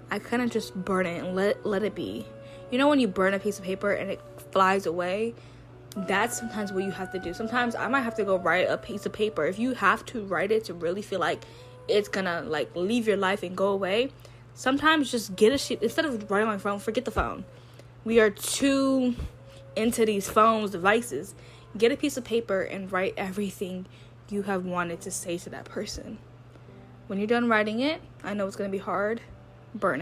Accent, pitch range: American, 170-215 Hz